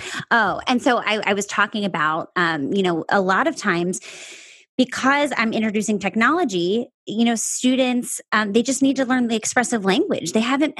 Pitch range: 195-260 Hz